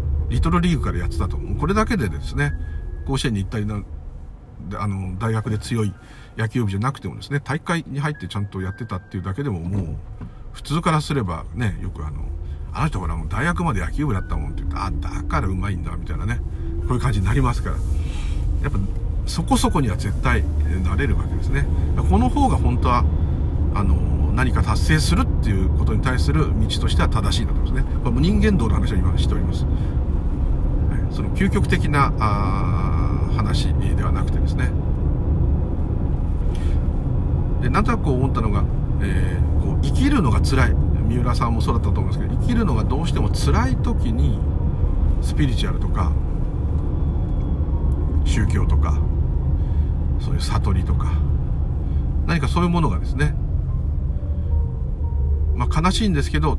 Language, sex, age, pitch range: Japanese, male, 50-69, 75-95 Hz